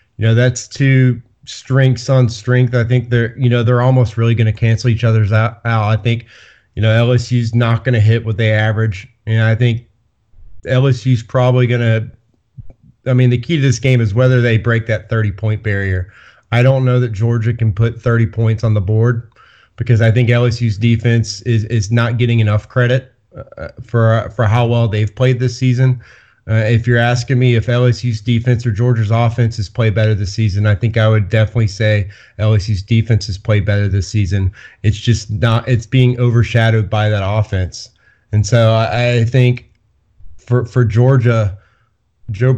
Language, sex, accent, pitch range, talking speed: English, male, American, 110-125 Hz, 195 wpm